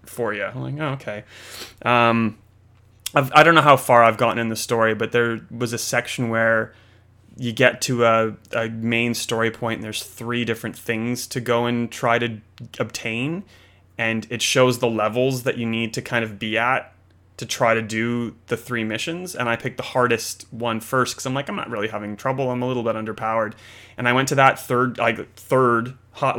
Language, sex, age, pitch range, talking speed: English, male, 30-49, 110-135 Hz, 210 wpm